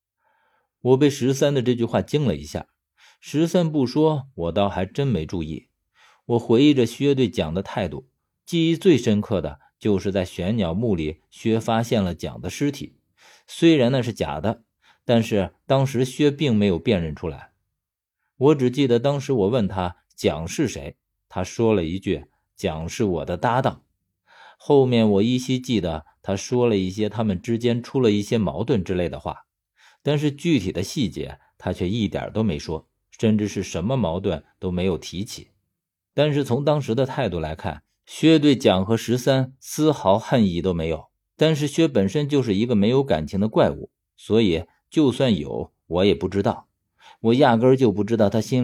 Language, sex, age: Chinese, male, 50-69